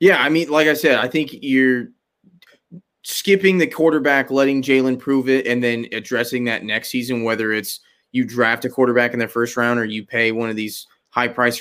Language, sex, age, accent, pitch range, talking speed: English, male, 20-39, American, 115-130 Hz, 200 wpm